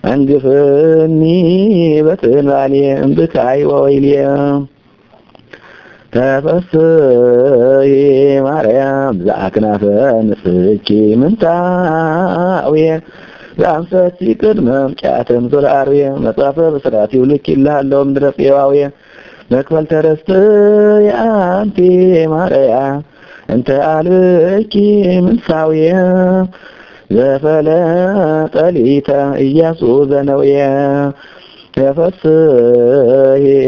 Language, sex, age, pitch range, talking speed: Amharic, male, 20-39, 140-170 Hz, 60 wpm